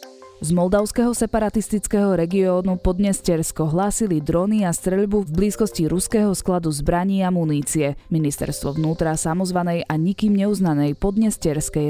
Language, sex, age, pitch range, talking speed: Slovak, female, 20-39, 155-195 Hz, 115 wpm